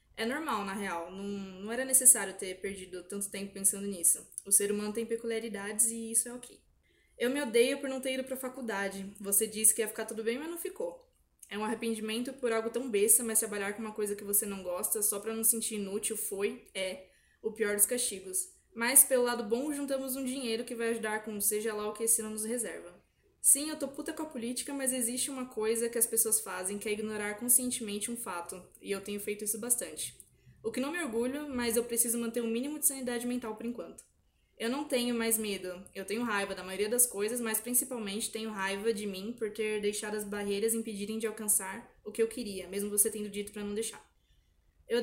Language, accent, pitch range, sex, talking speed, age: Portuguese, Brazilian, 205-240 Hz, female, 225 wpm, 20-39